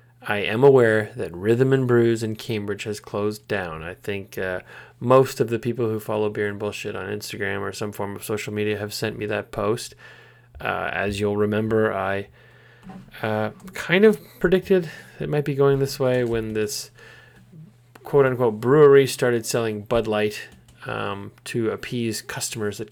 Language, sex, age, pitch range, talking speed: English, male, 20-39, 105-125 Hz, 170 wpm